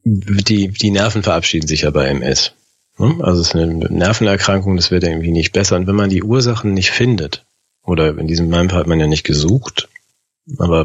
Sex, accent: male, German